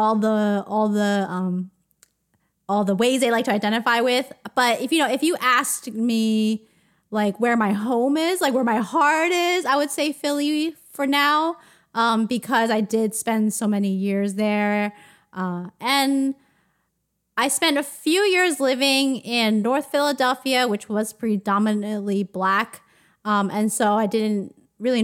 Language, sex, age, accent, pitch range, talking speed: English, female, 20-39, American, 205-260 Hz, 160 wpm